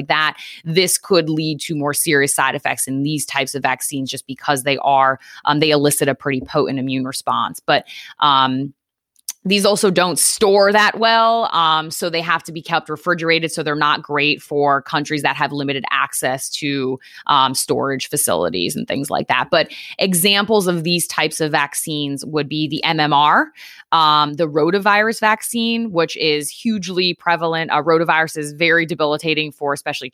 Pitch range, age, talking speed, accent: 145-170 Hz, 20-39, 175 wpm, American